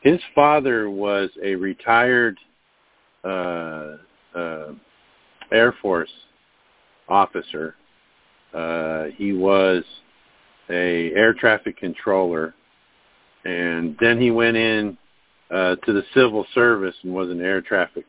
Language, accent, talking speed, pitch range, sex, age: English, American, 105 wpm, 90-115 Hz, male, 50-69